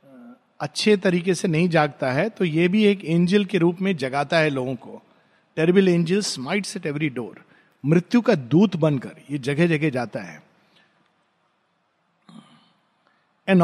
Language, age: Hindi, 50-69